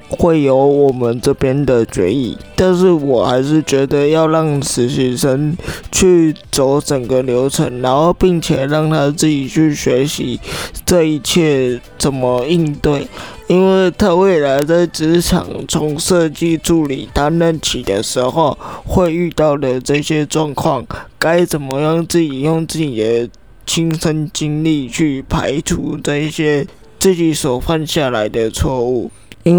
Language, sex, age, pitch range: Chinese, male, 20-39, 135-160 Hz